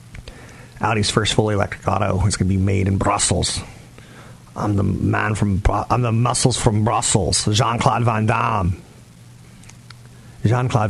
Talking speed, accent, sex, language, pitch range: 140 wpm, American, male, English, 95-120 Hz